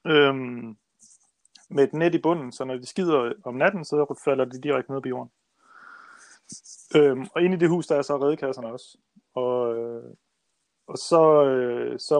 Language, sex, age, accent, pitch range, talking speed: Danish, male, 30-49, native, 120-155 Hz, 165 wpm